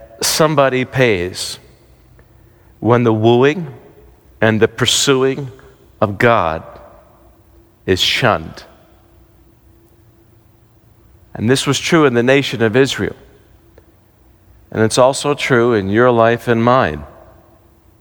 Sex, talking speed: male, 100 wpm